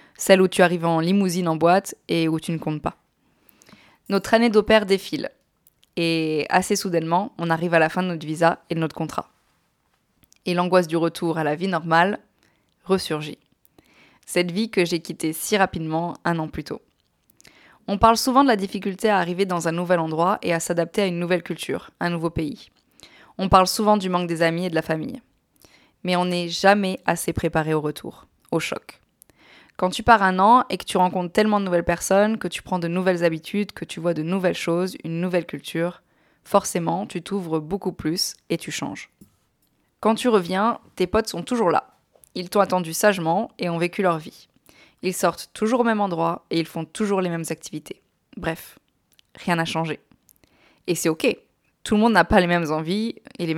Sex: female